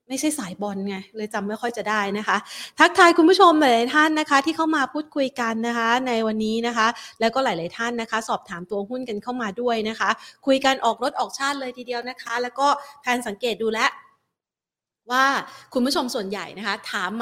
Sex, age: female, 30-49